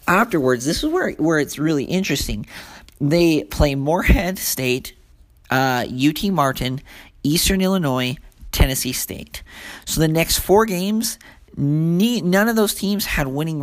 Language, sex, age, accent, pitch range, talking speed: English, male, 40-59, American, 130-155 Hz, 130 wpm